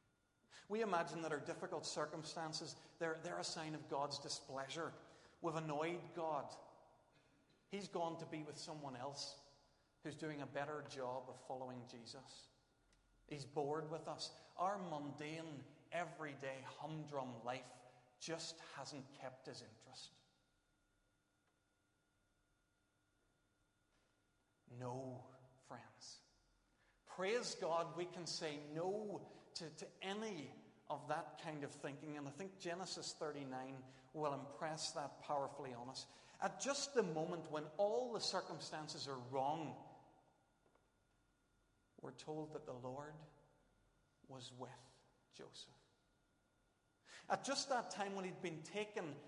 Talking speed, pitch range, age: 120 wpm, 135-165 Hz, 40-59